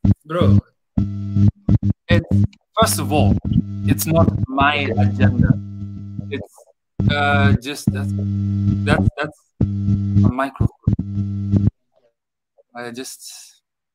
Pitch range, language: 125-180 Hz, English